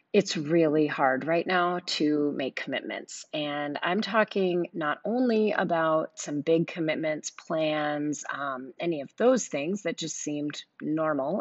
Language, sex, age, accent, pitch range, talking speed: English, female, 30-49, American, 150-190 Hz, 140 wpm